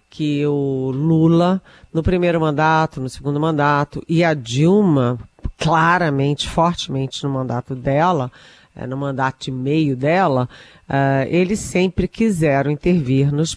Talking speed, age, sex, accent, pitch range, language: 125 wpm, 40-59, female, Brazilian, 135-165 Hz, Portuguese